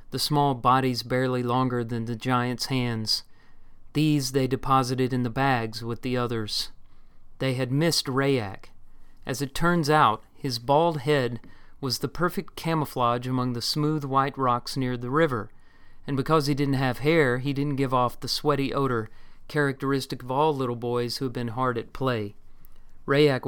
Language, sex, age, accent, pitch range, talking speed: English, male, 40-59, American, 120-140 Hz, 170 wpm